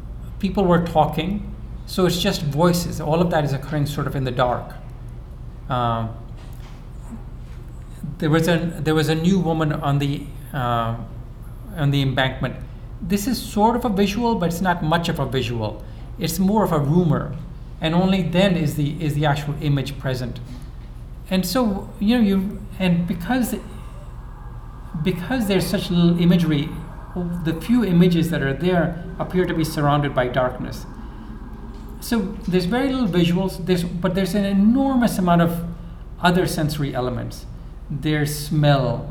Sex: male